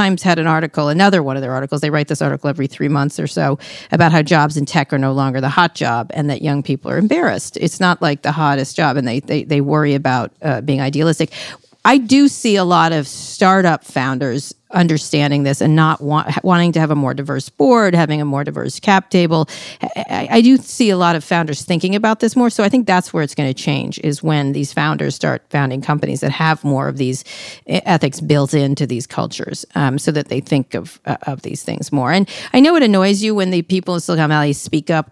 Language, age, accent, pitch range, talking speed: English, 40-59, American, 140-180 Hz, 240 wpm